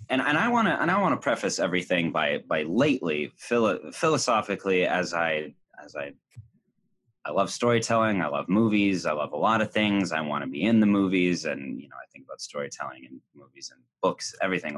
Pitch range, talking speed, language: 85-120 Hz, 205 wpm, English